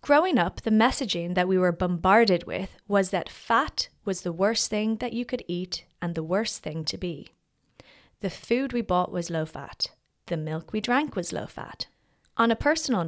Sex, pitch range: female, 175-230 Hz